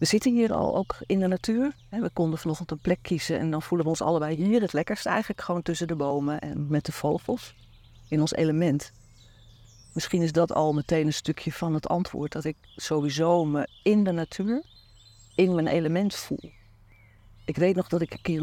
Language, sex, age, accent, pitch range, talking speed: Dutch, female, 50-69, Dutch, 115-180 Hz, 205 wpm